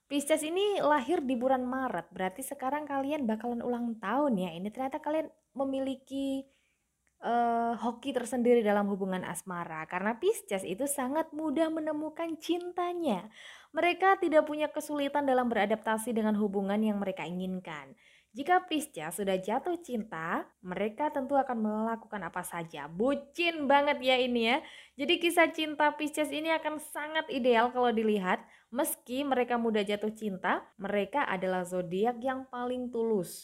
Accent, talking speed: native, 140 wpm